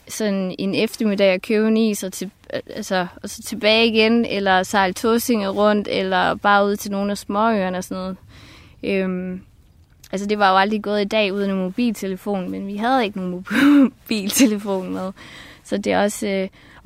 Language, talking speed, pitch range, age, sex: Danish, 180 wpm, 185-215 Hz, 20-39, female